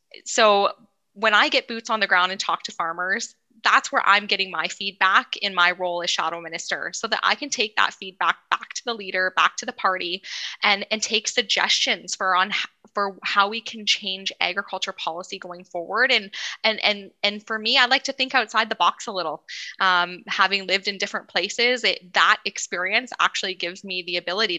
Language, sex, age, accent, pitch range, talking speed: English, female, 10-29, American, 180-220 Hz, 205 wpm